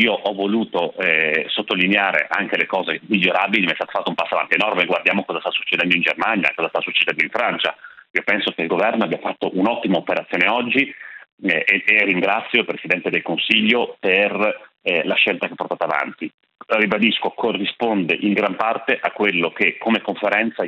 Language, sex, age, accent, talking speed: Italian, male, 40-59, native, 185 wpm